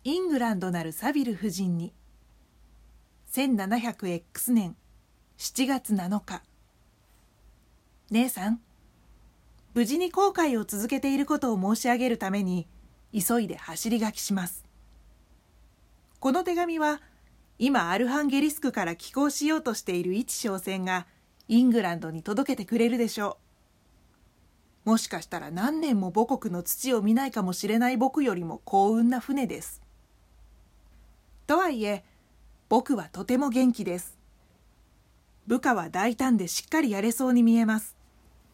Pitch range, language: 190-255 Hz, Japanese